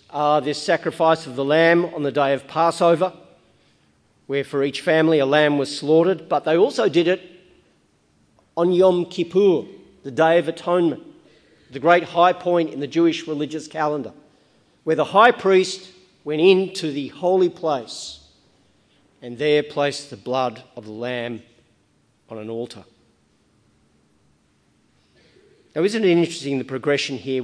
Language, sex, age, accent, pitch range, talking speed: English, male, 40-59, Australian, 140-175 Hz, 145 wpm